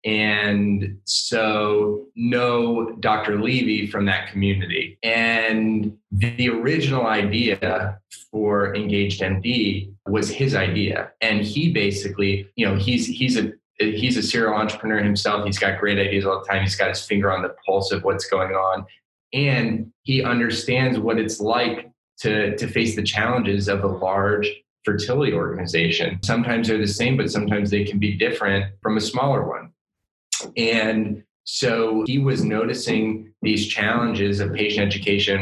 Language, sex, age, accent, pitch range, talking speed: English, male, 20-39, American, 100-115 Hz, 150 wpm